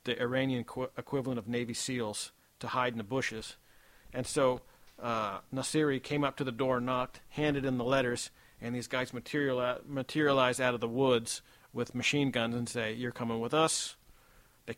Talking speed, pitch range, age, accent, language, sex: 175 wpm, 120-150 Hz, 50-69, American, English, male